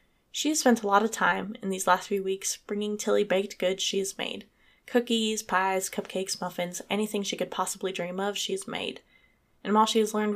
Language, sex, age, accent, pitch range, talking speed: English, female, 10-29, American, 190-235 Hz, 215 wpm